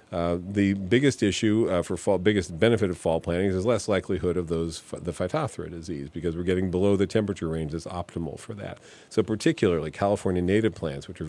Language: English